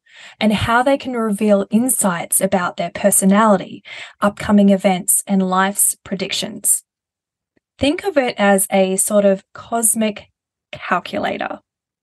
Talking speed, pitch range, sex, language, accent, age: 115 wpm, 195-225 Hz, female, English, Australian, 20-39